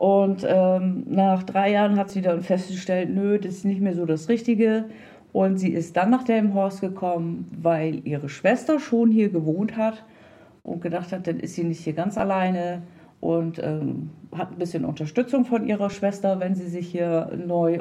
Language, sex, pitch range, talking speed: German, female, 170-220 Hz, 185 wpm